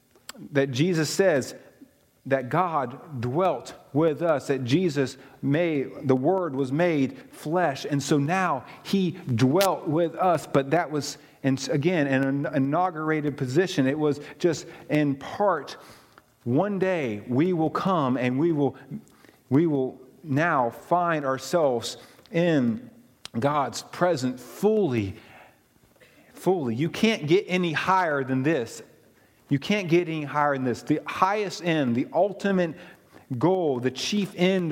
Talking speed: 135 wpm